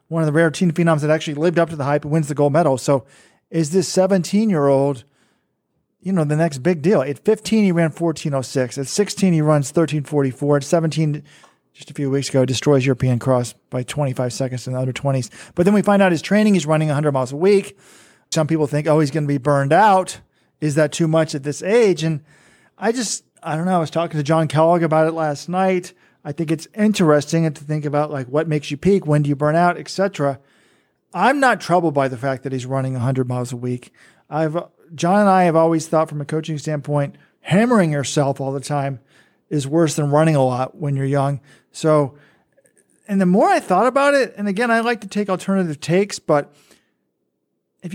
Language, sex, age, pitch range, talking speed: English, male, 40-59, 145-185 Hz, 220 wpm